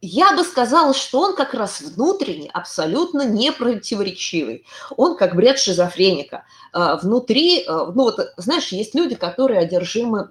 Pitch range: 185-265 Hz